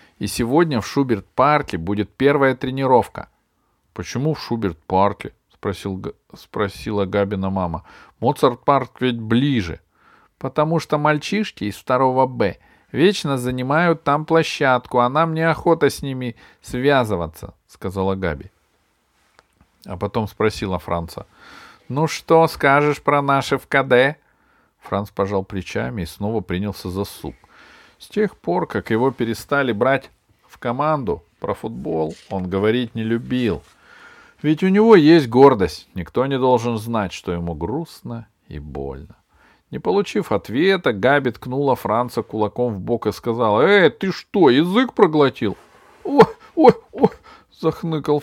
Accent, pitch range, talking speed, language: native, 100-145 Hz, 130 wpm, Russian